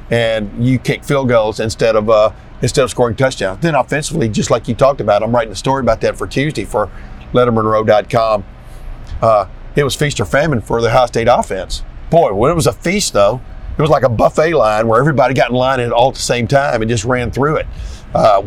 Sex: male